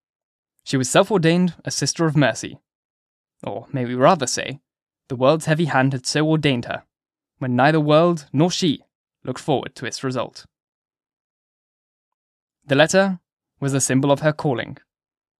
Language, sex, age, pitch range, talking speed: English, male, 10-29, 130-155 Hz, 150 wpm